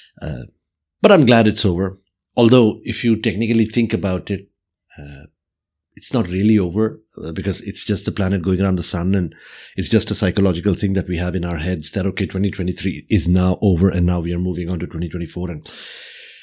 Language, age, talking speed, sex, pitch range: English, 50-69, 195 wpm, male, 90-115 Hz